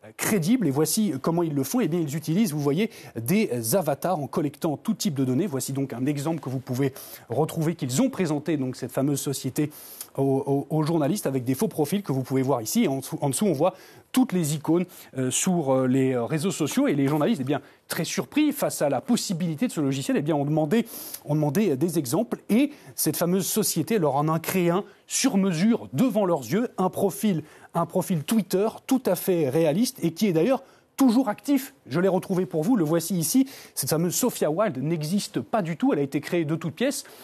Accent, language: French, French